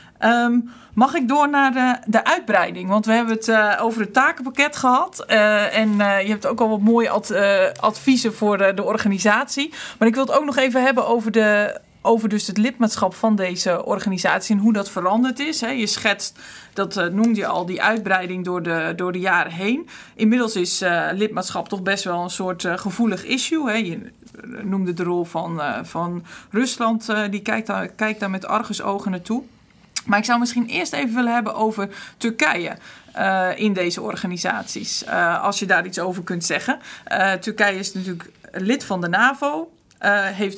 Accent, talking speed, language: Dutch, 185 wpm, Dutch